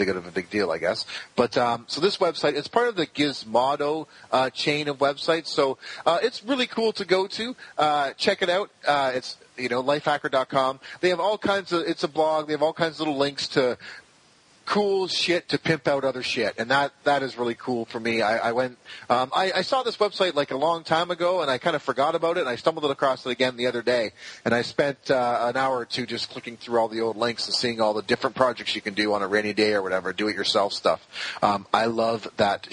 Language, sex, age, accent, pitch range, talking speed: English, male, 30-49, American, 125-165 Hz, 240 wpm